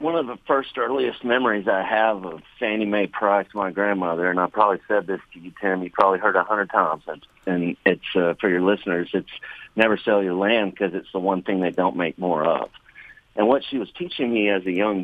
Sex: male